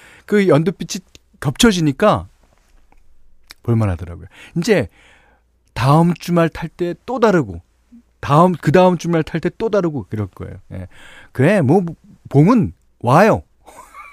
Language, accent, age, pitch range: Korean, native, 40-59, 105-165 Hz